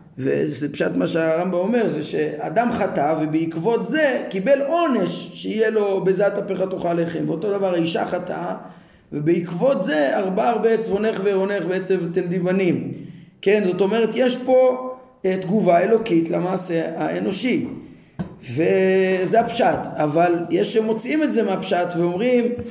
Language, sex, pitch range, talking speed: Hebrew, male, 175-235 Hz, 130 wpm